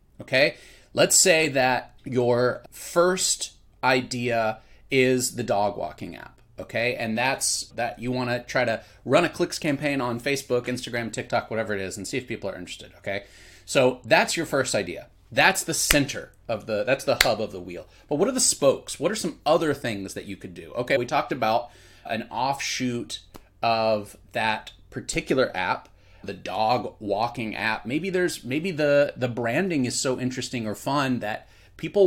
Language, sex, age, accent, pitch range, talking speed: English, male, 30-49, American, 105-140 Hz, 180 wpm